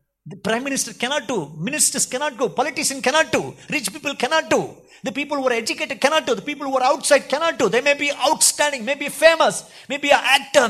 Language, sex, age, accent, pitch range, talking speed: Tamil, male, 50-69, native, 185-275 Hz, 225 wpm